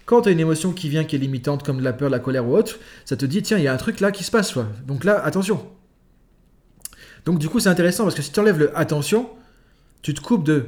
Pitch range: 135-185 Hz